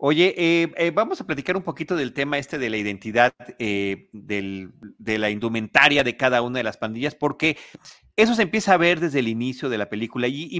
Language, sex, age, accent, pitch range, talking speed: Spanish, male, 40-59, Mexican, 125-180 Hz, 220 wpm